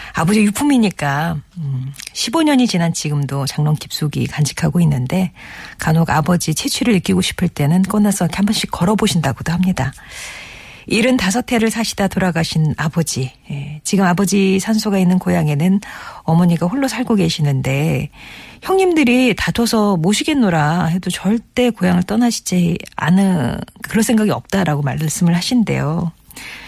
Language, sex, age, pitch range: Korean, female, 40-59, 155-205 Hz